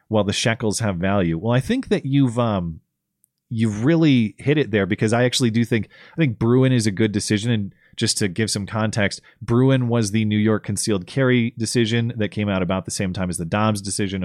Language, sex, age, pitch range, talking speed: English, male, 30-49, 90-115 Hz, 225 wpm